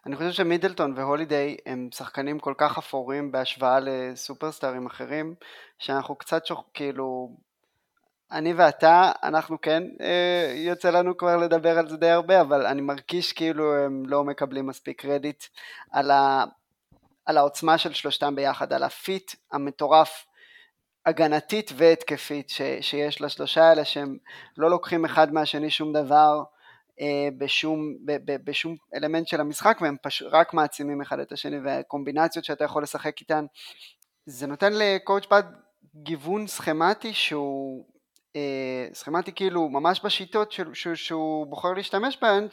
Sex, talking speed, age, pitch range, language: male, 140 wpm, 20-39, 145-170 Hz, Hebrew